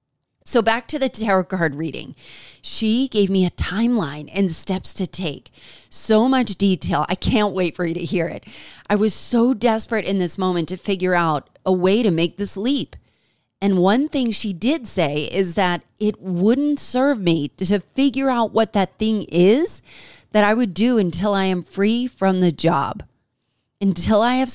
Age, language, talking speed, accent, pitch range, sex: 30-49, English, 185 wpm, American, 160-215 Hz, female